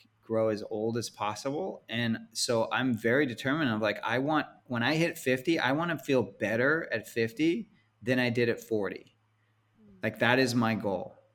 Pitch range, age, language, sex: 110-130 Hz, 30-49, English, male